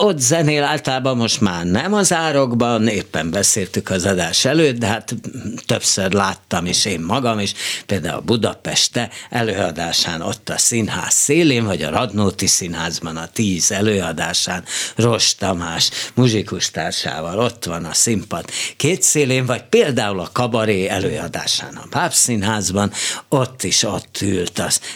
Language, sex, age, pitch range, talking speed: Hungarian, male, 60-79, 95-135 Hz, 140 wpm